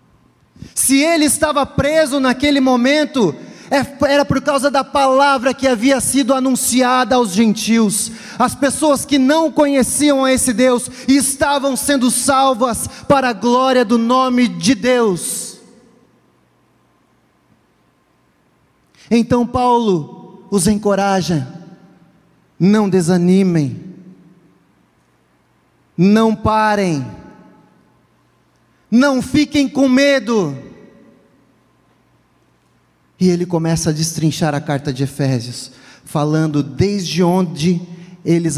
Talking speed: 95 wpm